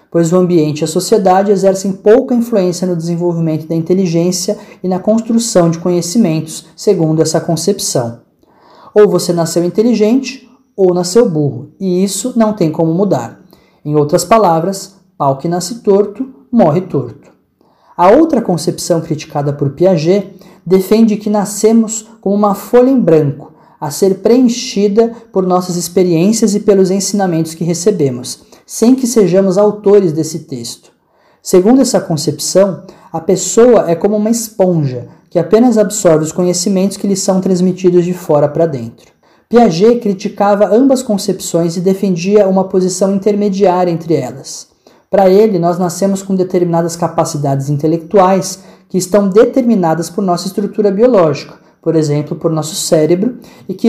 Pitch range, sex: 170-210 Hz, male